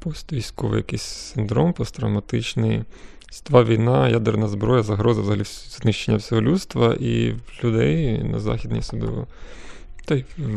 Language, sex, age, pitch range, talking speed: Ukrainian, male, 20-39, 110-135 Hz, 110 wpm